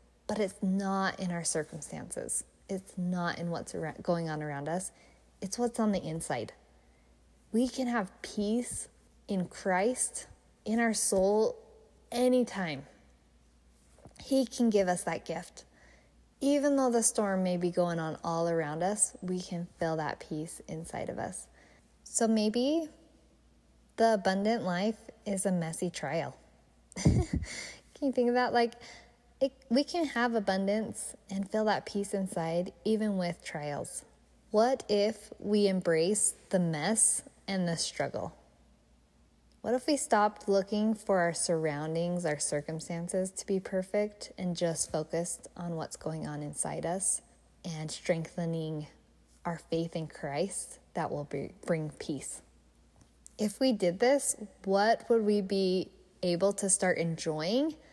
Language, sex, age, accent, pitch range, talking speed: English, female, 10-29, American, 165-220 Hz, 140 wpm